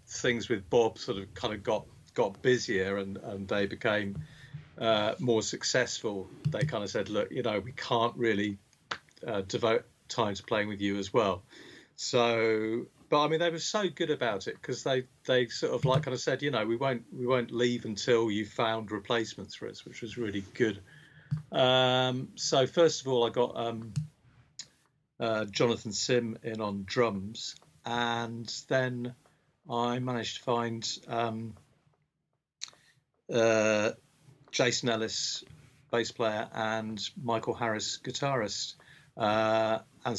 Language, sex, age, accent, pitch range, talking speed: English, male, 50-69, British, 110-135 Hz, 155 wpm